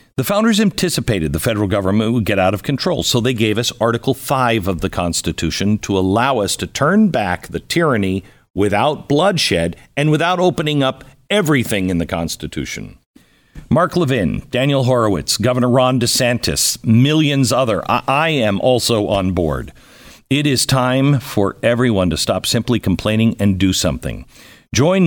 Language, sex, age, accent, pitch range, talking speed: English, male, 50-69, American, 105-150 Hz, 160 wpm